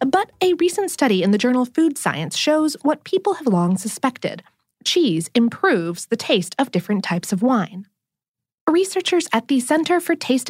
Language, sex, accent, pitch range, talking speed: English, female, American, 190-310 Hz, 170 wpm